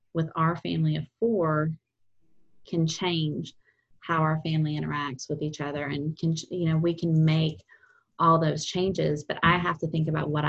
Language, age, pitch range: English, 20-39, 155-185 Hz